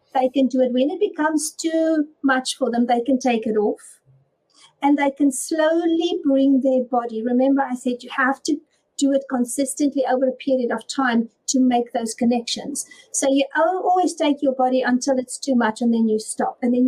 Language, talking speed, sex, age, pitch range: English, 205 wpm, female, 50-69, 230-275 Hz